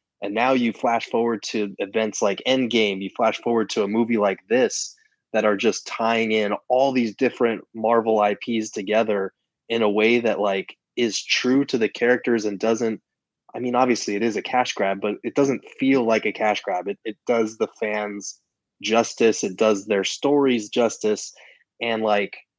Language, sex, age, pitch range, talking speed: English, male, 20-39, 105-120 Hz, 185 wpm